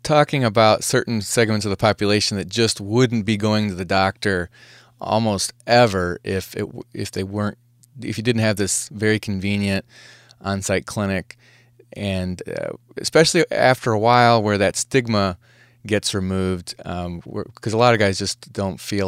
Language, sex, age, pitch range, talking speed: English, male, 30-49, 95-120 Hz, 160 wpm